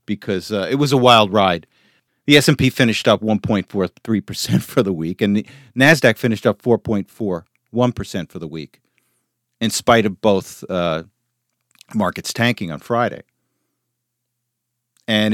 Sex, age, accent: male, 50-69, American